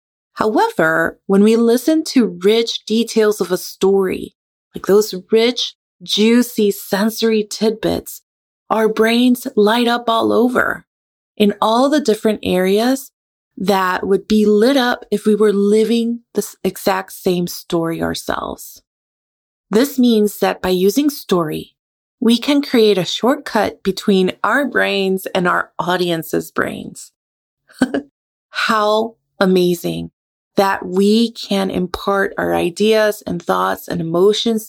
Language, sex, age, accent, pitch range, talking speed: English, female, 30-49, American, 175-220 Hz, 125 wpm